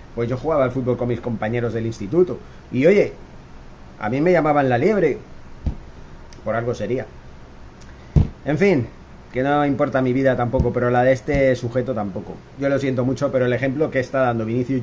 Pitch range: 125-160 Hz